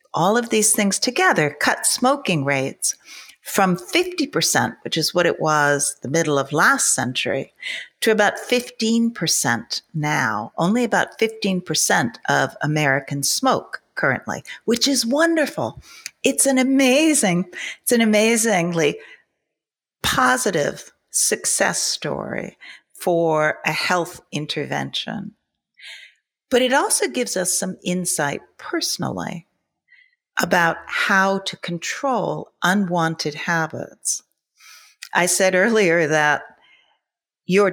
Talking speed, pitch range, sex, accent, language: 105 wpm, 165-245 Hz, female, American, English